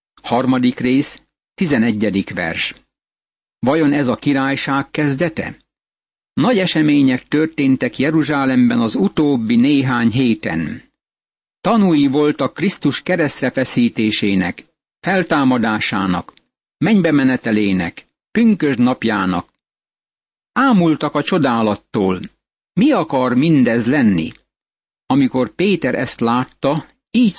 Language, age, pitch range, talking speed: Hungarian, 60-79, 125-155 Hz, 90 wpm